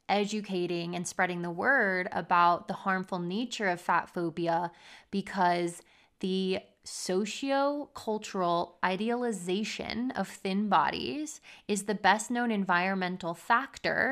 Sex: female